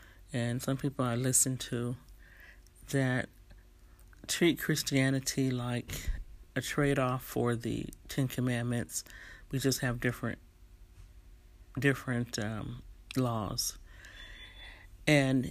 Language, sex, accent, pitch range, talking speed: English, male, American, 90-135 Hz, 95 wpm